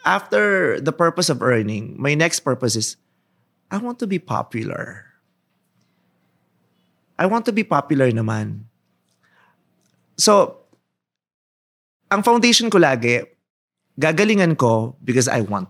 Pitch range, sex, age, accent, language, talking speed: 115-190 Hz, male, 30-49, native, Filipino, 115 wpm